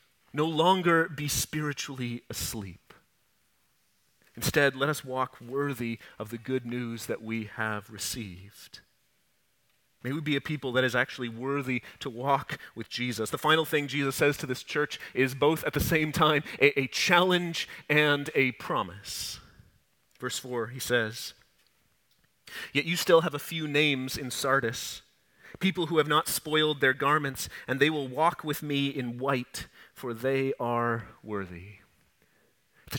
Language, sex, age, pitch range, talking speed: English, male, 30-49, 125-160 Hz, 155 wpm